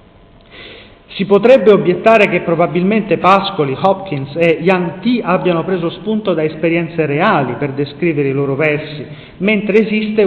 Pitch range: 140-180 Hz